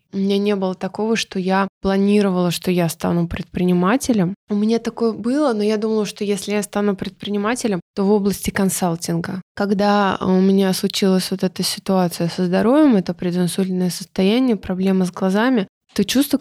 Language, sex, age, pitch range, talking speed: Russian, female, 20-39, 180-210 Hz, 165 wpm